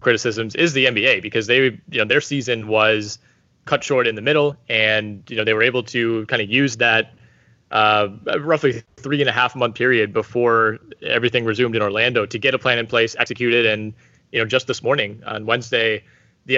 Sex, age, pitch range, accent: male, 20-39, 115-135 Hz, American